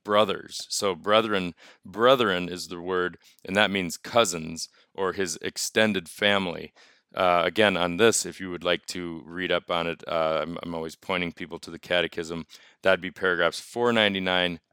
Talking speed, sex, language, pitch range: 165 wpm, male, English, 85-100 Hz